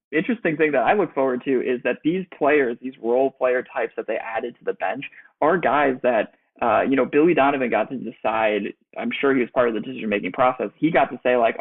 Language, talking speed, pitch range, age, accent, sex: English, 240 wpm, 125-150 Hz, 20-39, American, male